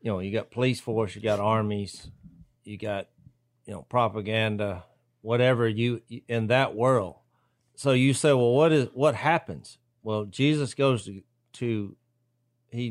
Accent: American